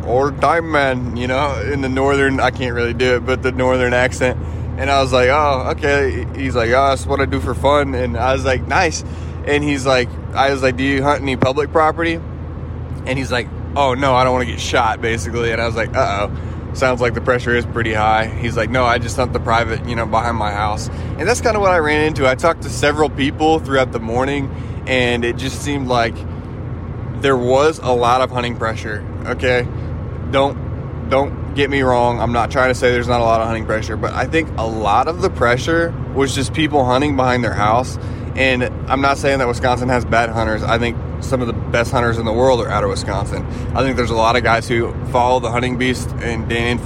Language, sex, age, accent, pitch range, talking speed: English, male, 20-39, American, 115-130 Hz, 240 wpm